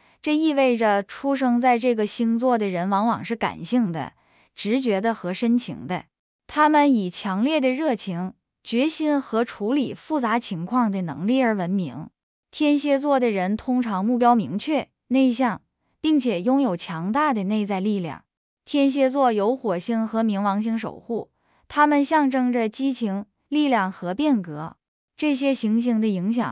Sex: female